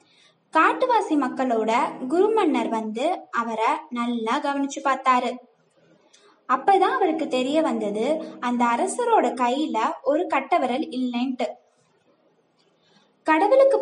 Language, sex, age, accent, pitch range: Tamil, female, 20-39, native, 250-340 Hz